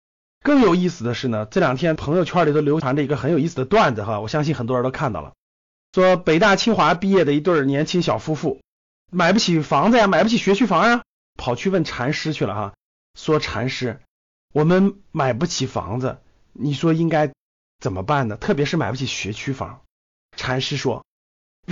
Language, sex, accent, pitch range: Chinese, male, native, 140-230 Hz